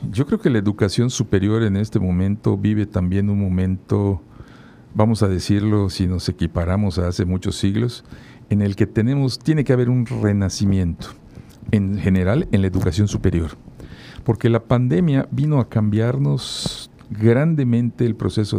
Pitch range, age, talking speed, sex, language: 95-120 Hz, 50-69, 150 wpm, male, Spanish